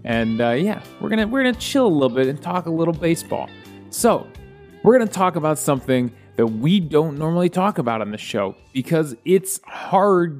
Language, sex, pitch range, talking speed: English, male, 130-175 Hz, 195 wpm